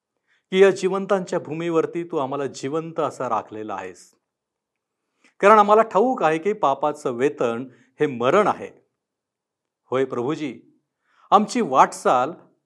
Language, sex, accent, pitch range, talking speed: Marathi, male, native, 130-185 Hz, 115 wpm